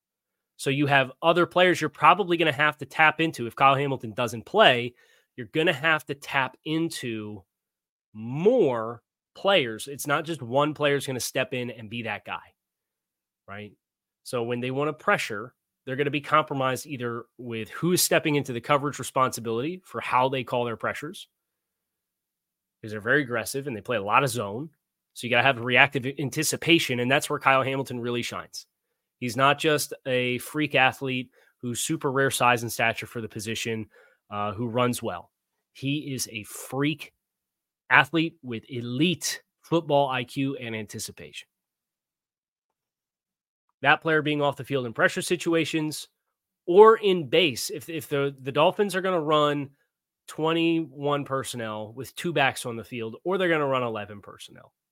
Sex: male